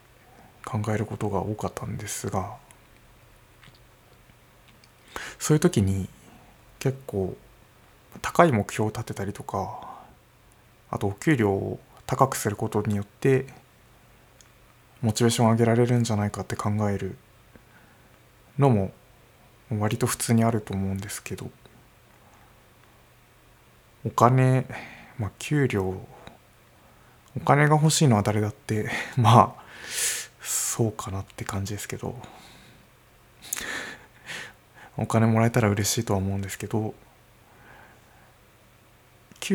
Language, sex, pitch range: Japanese, male, 105-125 Hz